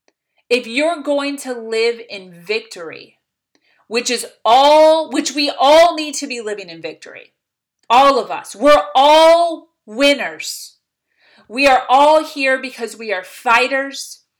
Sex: female